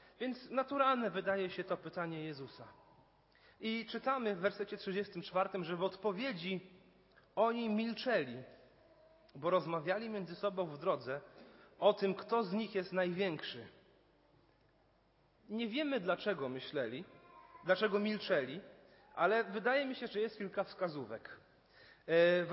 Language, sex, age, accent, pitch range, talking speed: Polish, male, 30-49, native, 175-215 Hz, 120 wpm